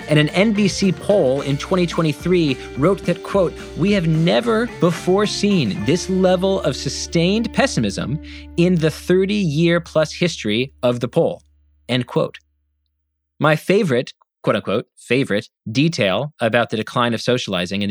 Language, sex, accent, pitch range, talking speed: English, male, American, 135-185 Hz, 130 wpm